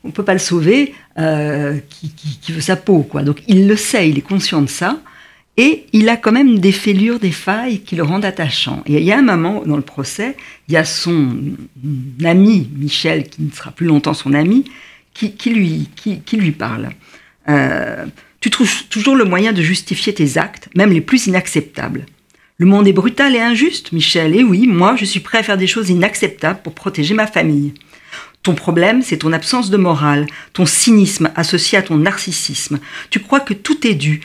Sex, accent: female, French